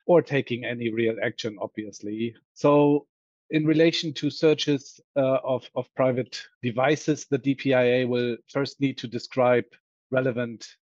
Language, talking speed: English, 135 wpm